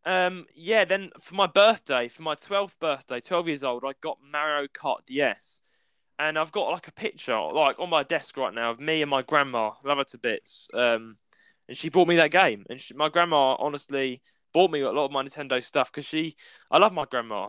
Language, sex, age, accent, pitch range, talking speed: English, male, 10-29, British, 130-165 Hz, 220 wpm